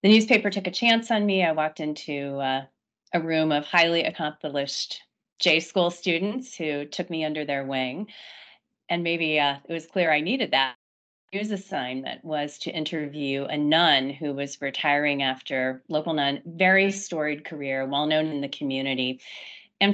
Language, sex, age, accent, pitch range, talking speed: English, female, 30-49, American, 145-190 Hz, 170 wpm